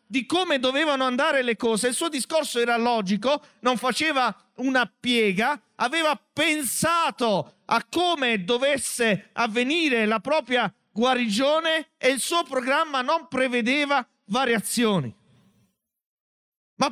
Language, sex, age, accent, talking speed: Italian, male, 50-69, native, 115 wpm